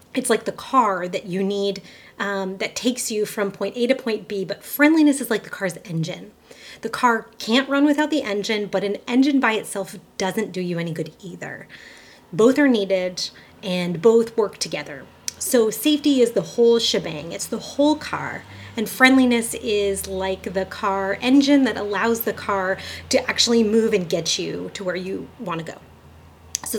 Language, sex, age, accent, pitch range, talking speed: English, female, 30-49, American, 190-235 Hz, 185 wpm